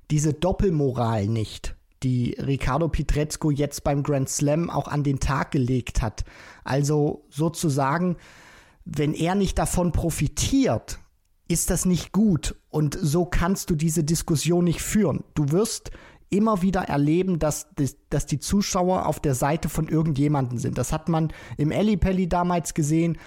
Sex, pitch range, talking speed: male, 145-190 Hz, 145 wpm